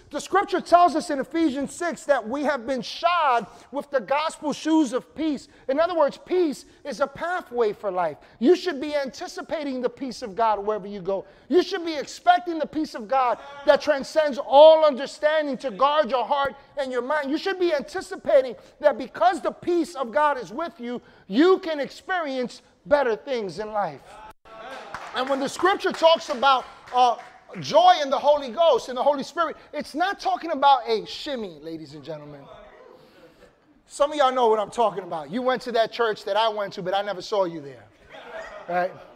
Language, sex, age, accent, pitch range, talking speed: English, male, 30-49, American, 215-300 Hz, 195 wpm